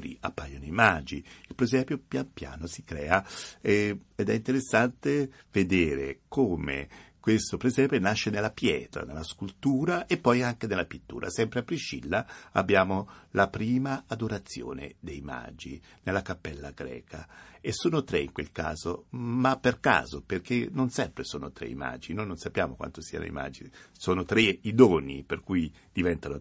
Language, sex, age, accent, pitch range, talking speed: Italian, male, 60-79, native, 80-115 Hz, 160 wpm